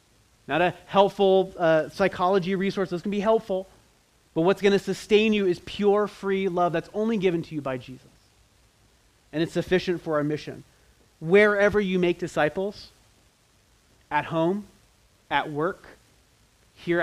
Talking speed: 150 wpm